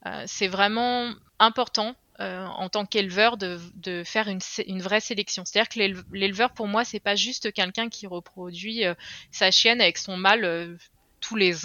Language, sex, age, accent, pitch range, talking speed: French, female, 20-39, French, 180-220 Hz, 175 wpm